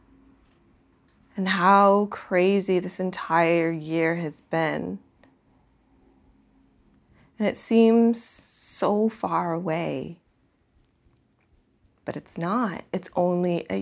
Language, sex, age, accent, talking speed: English, female, 20-39, American, 85 wpm